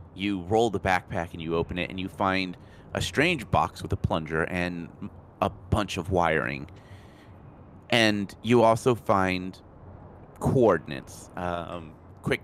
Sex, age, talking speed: male, 30-49, 140 wpm